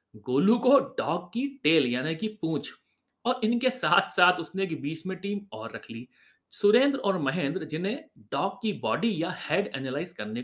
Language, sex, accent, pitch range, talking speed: Hindi, male, native, 140-210 Hz, 170 wpm